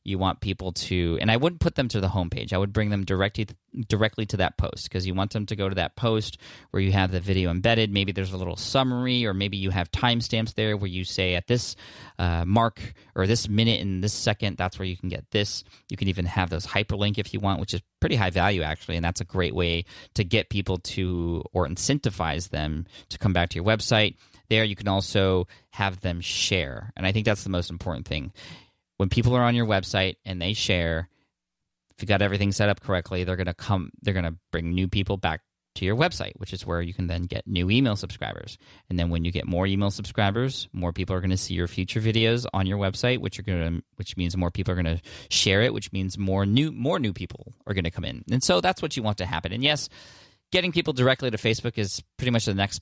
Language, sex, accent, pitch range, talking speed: English, male, American, 90-110 Hz, 240 wpm